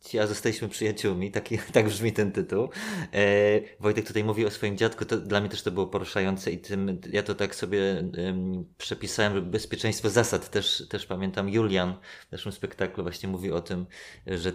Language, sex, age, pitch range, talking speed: Polish, male, 20-39, 95-115 Hz, 180 wpm